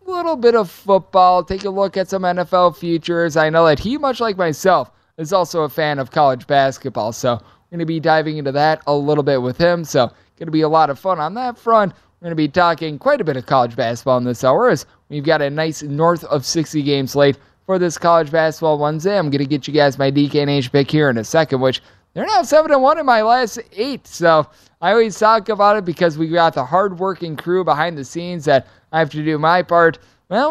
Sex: male